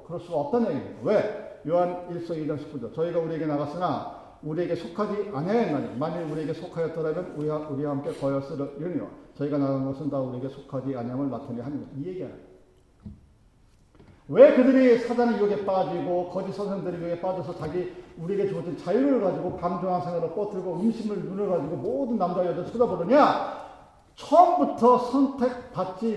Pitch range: 160-240 Hz